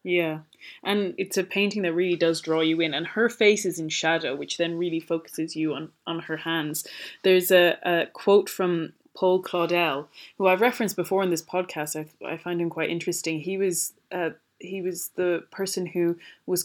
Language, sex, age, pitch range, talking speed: English, female, 20-39, 160-190 Hz, 200 wpm